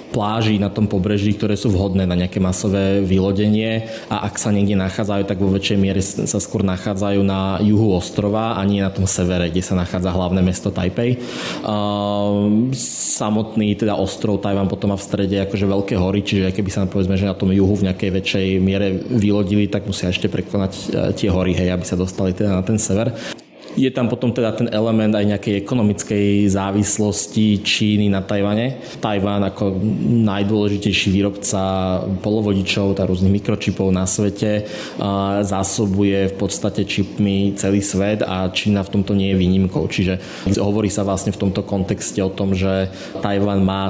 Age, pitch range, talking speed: 20-39, 95-105 Hz, 165 wpm